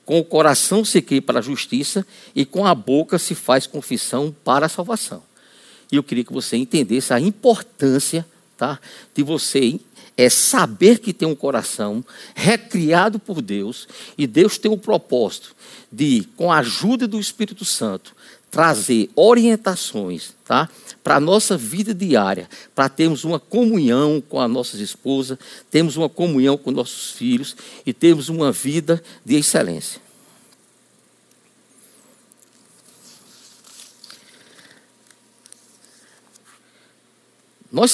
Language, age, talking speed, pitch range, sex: Portuguese, 50-69, 120 wpm, 130-215 Hz, male